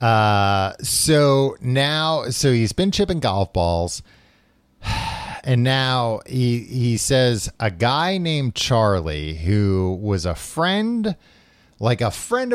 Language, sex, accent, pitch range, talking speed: English, male, American, 95-135 Hz, 120 wpm